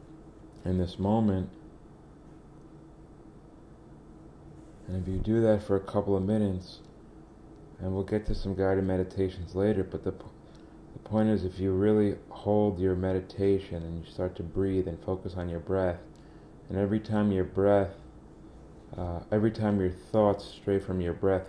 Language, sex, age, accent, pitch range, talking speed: English, male, 30-49, American, 90-105 Hz, 160 wpm